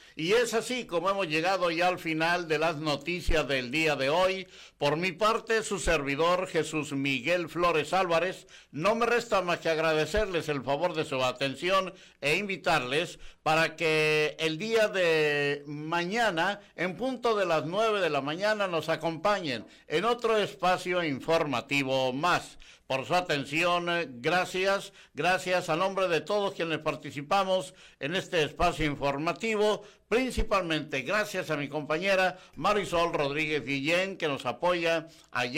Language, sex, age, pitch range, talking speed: Spanish, male, 60-79, 155-190 Hz, 145 wpm